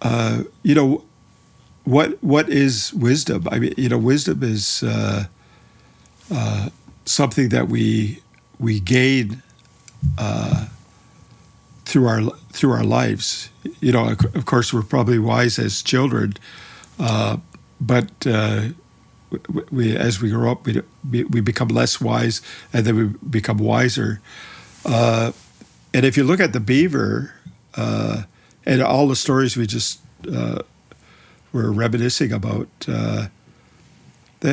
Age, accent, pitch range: 50-69, American, 110-130 Hz